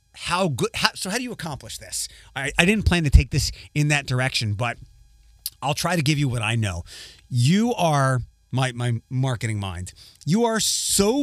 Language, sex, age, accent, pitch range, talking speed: English, male, 30-49, American, 110-175 Hz, 190 wpm